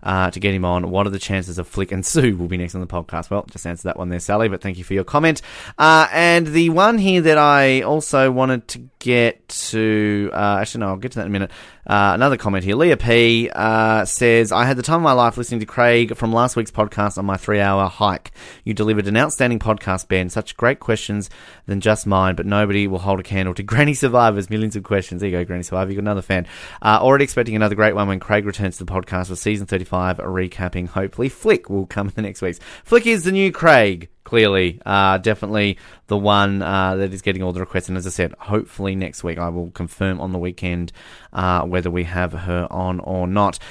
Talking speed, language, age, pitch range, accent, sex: 240 wpm, English, 30-49, 95-115 Hz, Australian, male